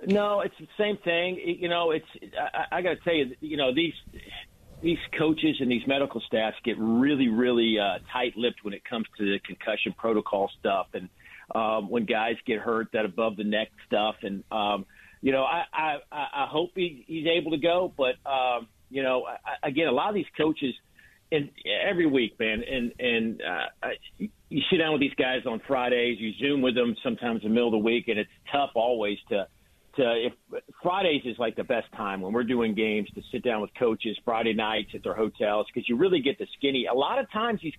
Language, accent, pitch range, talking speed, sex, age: English, American, 120-170 Hz, 215 wpm, male, 50-69